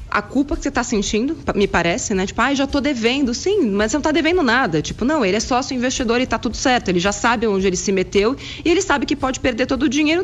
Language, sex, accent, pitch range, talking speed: Portuguese, female, Brazilian, 185-260 Hz, 280 wpm